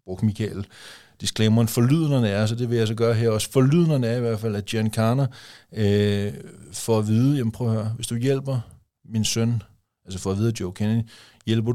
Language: Danish